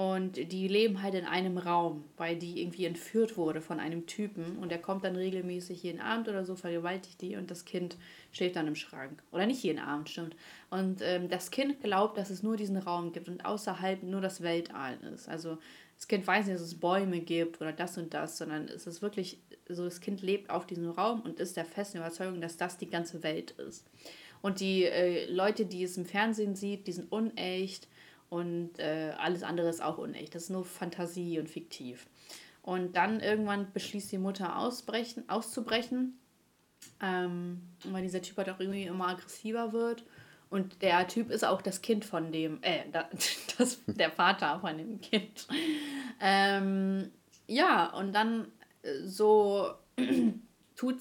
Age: 30-49